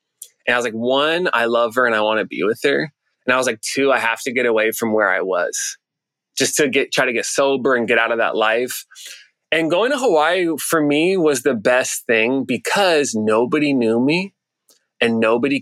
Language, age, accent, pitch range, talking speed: English, 20-39, American, 120-155 Hz, 225 wpm